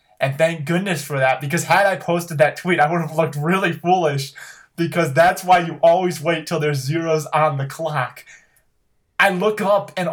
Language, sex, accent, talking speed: English, male, American, 195 wpm